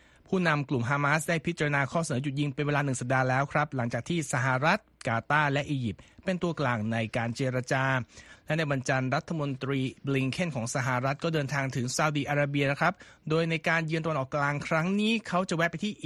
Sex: male